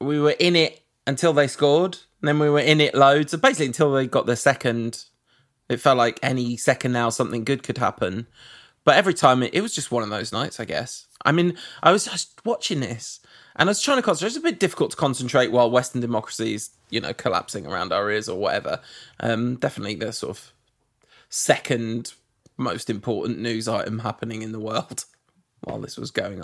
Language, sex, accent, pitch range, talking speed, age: English, male, British, 120-160 Hz, 210 wpm, 20-39